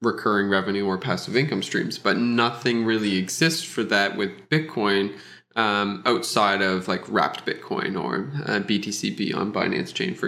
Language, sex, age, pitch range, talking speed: English, male, 20-39, 100-115 Hz, 160 wpm